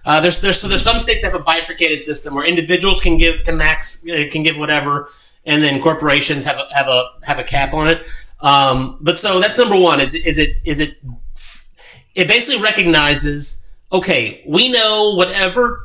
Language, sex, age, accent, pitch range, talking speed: English, male, 30-49, American, 150-195 Hz, 190 wpm